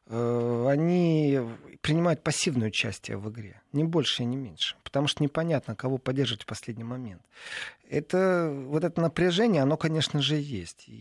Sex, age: male, 40-59